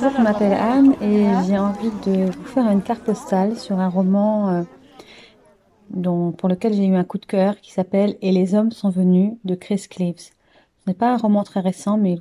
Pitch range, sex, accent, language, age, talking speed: 180-205 Hz, female, French, French, 30-49, 220 wpm